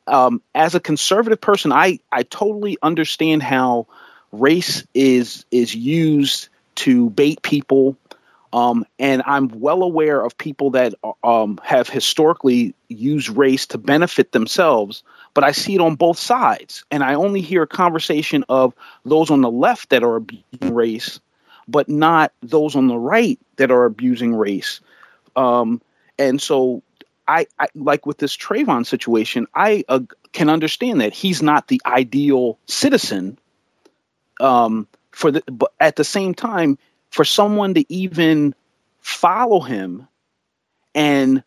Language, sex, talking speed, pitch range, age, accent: English, male, 150 wpm, 125-175 Hz, 40-59, American